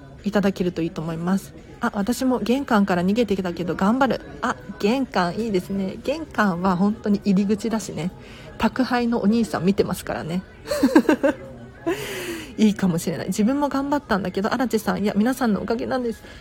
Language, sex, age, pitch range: Japanese, female, 40-59, 185-260 Hz